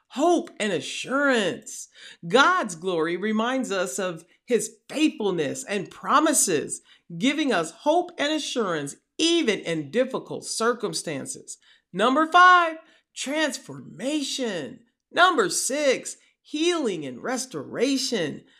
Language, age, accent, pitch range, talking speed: English, 40-59, American, 220-305 Hz, 95 wpm